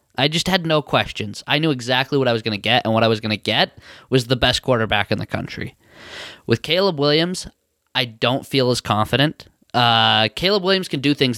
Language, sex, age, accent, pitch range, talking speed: English, male, 20-39, American, 110-130 Hz, 220 wpm